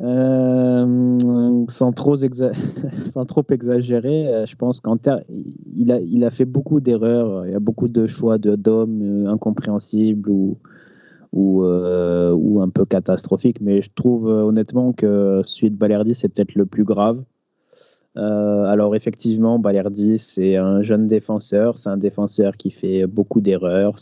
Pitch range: 100-125 Hz